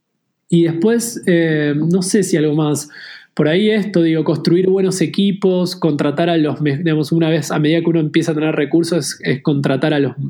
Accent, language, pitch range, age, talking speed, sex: Argentinian, Spanish, 140-170 Hz, 20-39, 200 wpm, male